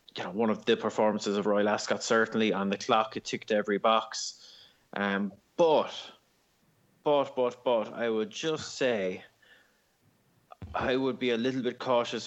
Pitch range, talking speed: 105-110 Hz, 160 wpm